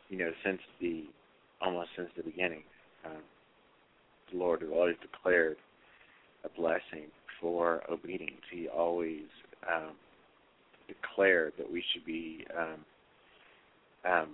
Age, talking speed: 40-59, 115 wpm